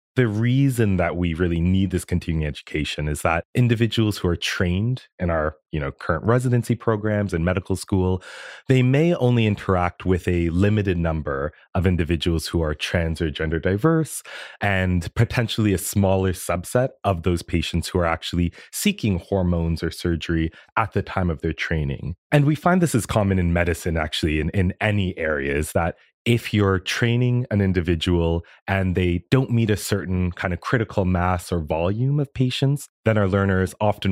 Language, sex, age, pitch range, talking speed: English, male, 30-49, 85-110 Hz, 175 wpm